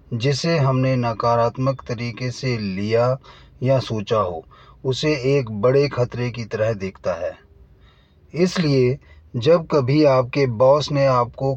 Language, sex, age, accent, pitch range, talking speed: Hindi, male, 30-49, native, 115-140 Hz, 125 wpm